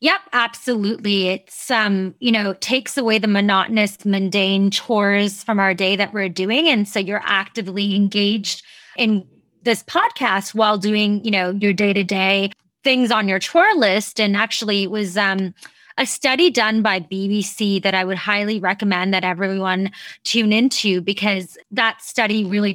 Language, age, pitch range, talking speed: English, 20-39, 195-230 Hz, 160 wpm